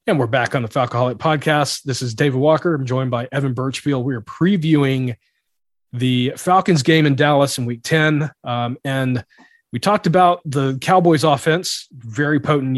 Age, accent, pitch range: 40-59, American, 130-170 Hz